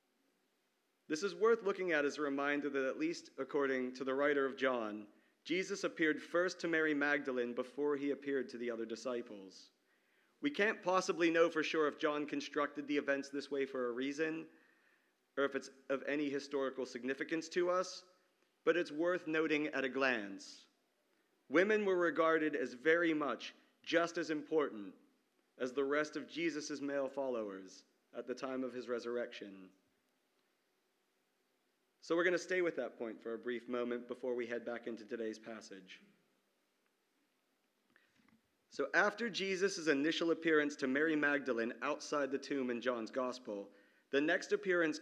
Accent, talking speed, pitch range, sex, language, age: American, 160 wpm, 125-160 Hz, male, English, 40-59